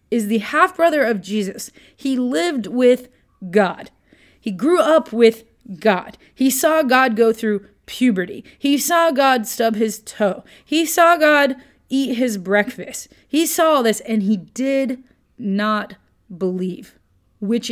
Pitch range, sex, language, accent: 190-250 Hz, female, English, American